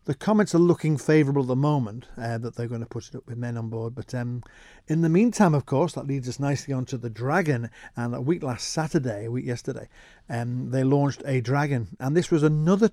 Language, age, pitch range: English, 50-69, 125-150 Hz